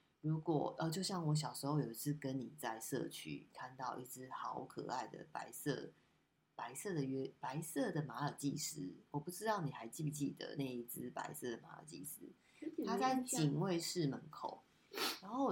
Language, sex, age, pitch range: Chinese, female, 20-39, 140-165 Hz